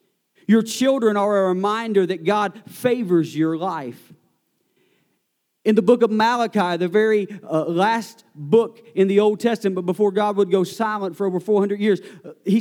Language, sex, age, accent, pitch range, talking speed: English, male, 40-59, American, 180-225 Hz, 165 wpm